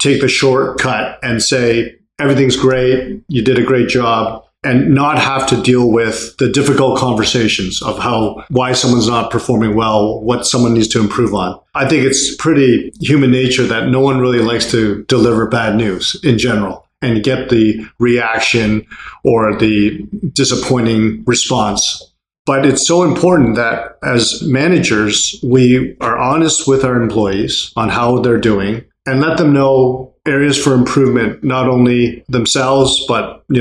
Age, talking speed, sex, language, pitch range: 40-59, 155 wpm, male, English, 115-135 Hz